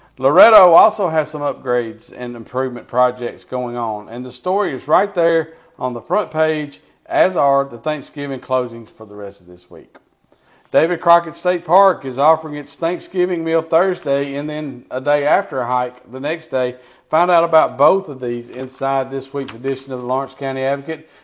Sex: male